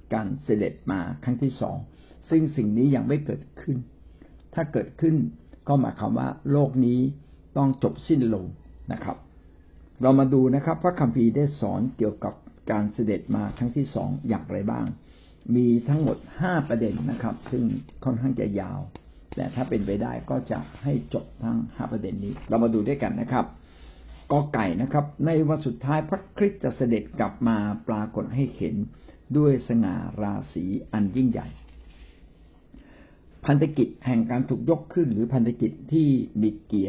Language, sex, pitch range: Thai, male, 105-140 Hz